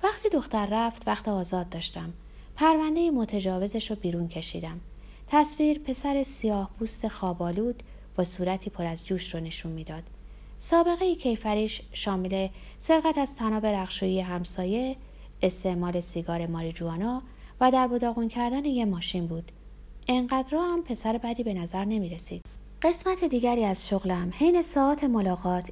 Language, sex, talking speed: Persian, female, 135 wpm